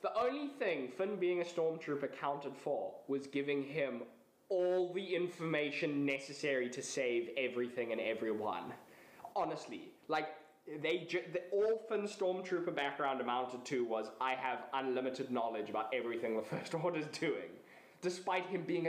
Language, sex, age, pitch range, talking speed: English, male, 10-29, 140-220 Hz, 140 wpm